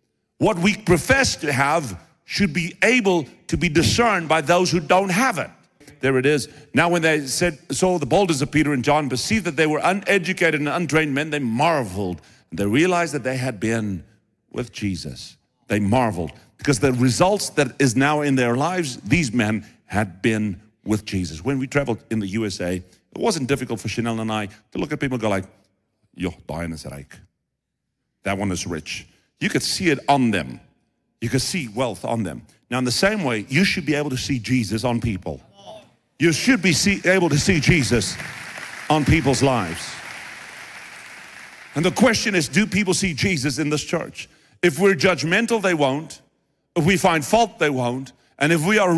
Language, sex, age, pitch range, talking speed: English, male, 50-69, 115-180 Hz, 190 wpm